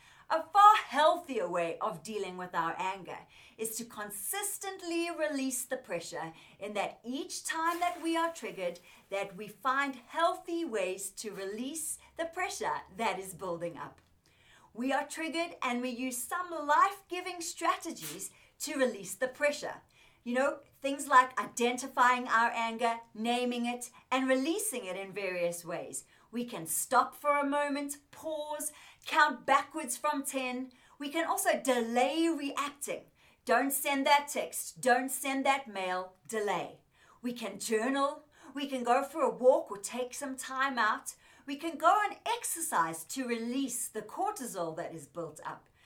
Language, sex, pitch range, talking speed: English, female, 220-300 Hz, 150 wpm